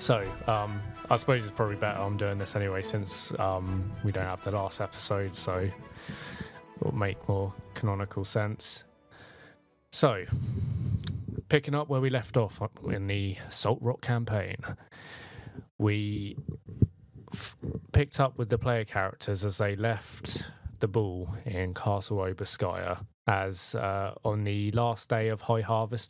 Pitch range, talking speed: 100-120 Hz, 140 wpm